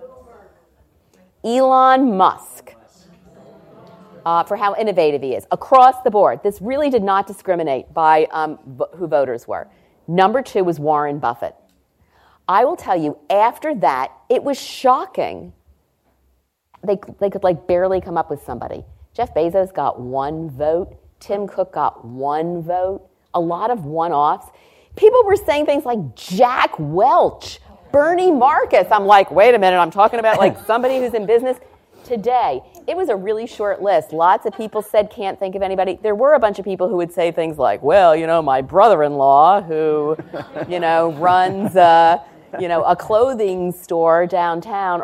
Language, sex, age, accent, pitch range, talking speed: English, female, 40-59, American, 160-220 Hz, 165 wpm